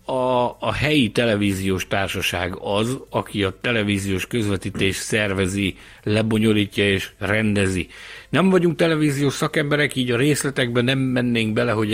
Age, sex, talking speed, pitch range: 60-79, male, 125 wpm, 100-125 Hz